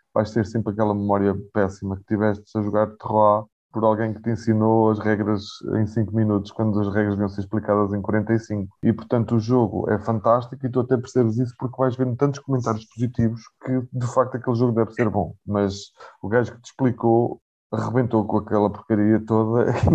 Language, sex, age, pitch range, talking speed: Portuguese, male, 20-39, 105-125 Hz, 200 wpm